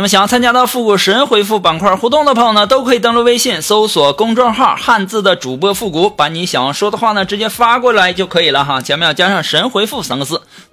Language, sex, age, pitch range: Chinese, male, 20-39, 160-220 Hz